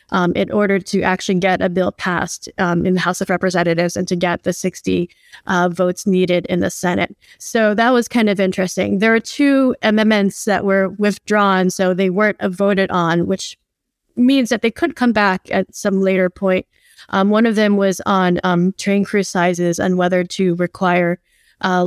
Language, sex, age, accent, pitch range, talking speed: English, female, 20-39, American, 180-215 Hz, 190 wpm